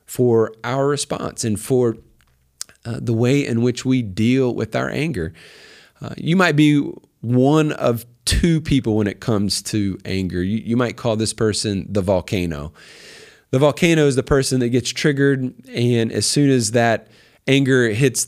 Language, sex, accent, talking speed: English, male, American, 165 wpm